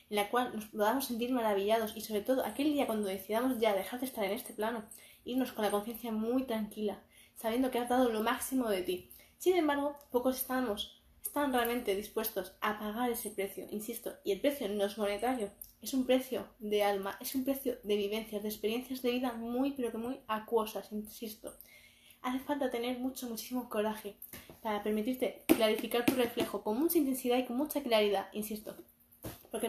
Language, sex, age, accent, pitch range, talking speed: Spanish, female, 20-39, Spanish, 210-255 Hz, 190 wpm